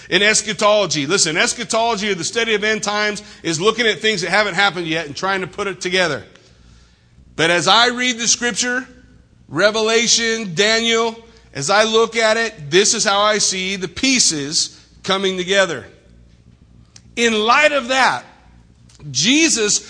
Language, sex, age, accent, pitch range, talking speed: English, male, 50-69, American, 180-240 Hz, 155 wpm